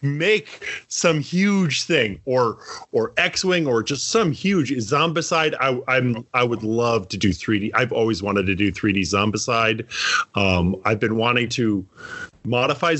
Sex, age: male, 30-49